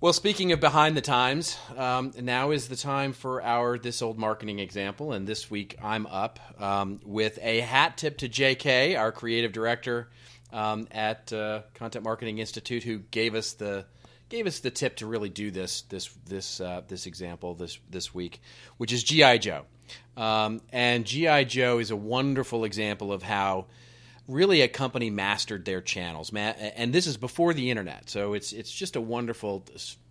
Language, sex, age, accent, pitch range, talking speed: English, male, 40-59, American, 105-125 Hz, 180 wpm